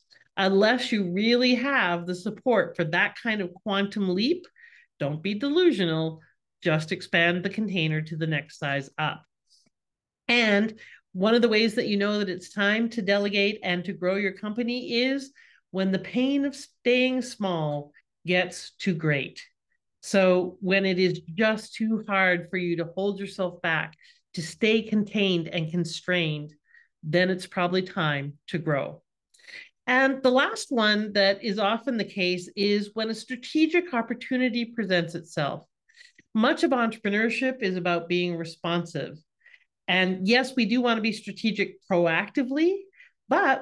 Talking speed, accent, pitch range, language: 150 wpm, American, 175-240 Hz, English